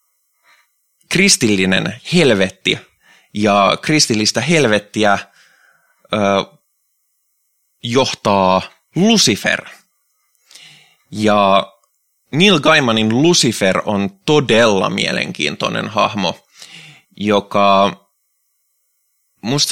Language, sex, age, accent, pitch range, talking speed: Finnish, male, 20-39, native, 95-110 Hz, 55 wpm